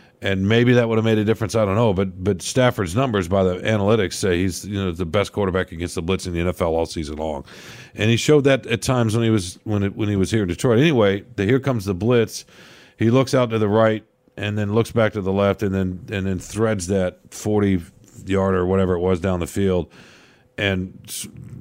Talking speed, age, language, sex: 240 wpm, 50-69, English, male